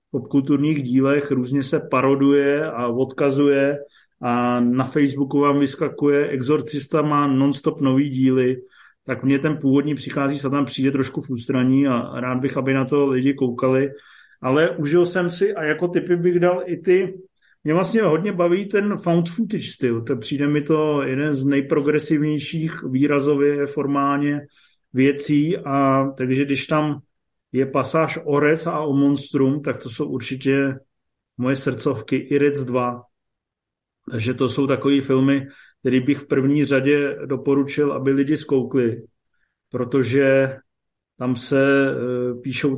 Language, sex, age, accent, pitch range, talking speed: Czech, male, 30-49, native, 130-150 Hz, 145 wpm